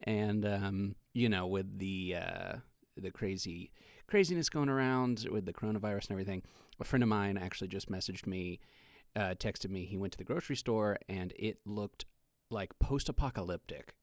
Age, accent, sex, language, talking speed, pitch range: 30-49, American, male, English, 165 wpm, 95-125 Hz